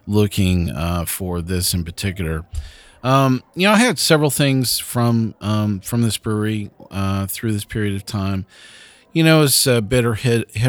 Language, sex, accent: English, male, American